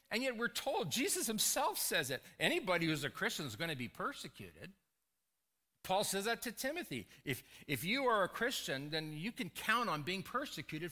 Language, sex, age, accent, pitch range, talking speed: English, male, 50-69, American, 120-185 Hz, 185 wpm